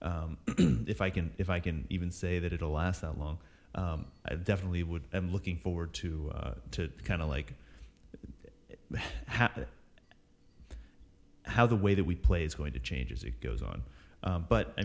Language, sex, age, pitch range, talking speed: English, male, 30-49, 80-95 Hz, 180 wpm